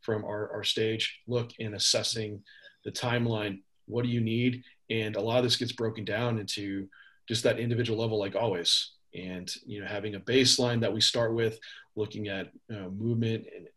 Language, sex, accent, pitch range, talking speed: English, male, American, 105-120 Hz, 190 wpm